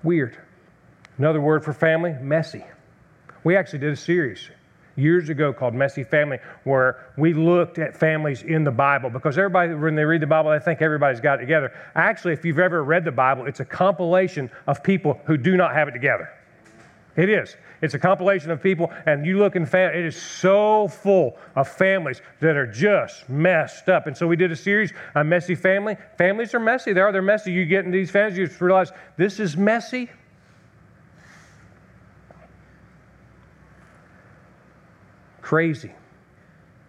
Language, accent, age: English, American, 40-59